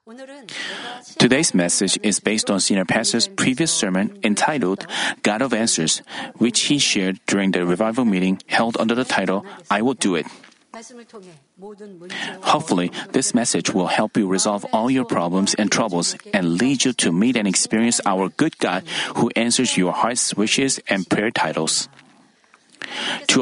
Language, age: Korean, 30-49